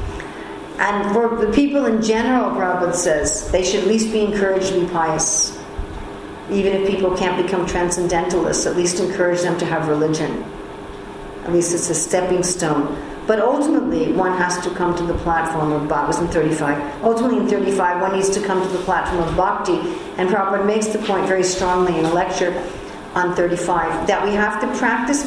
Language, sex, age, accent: English, female, 50-69, American